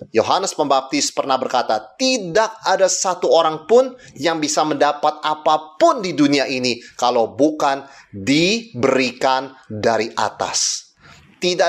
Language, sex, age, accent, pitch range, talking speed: Indonesian, male, 30-49, native, 125-185 Hz, 115 wpm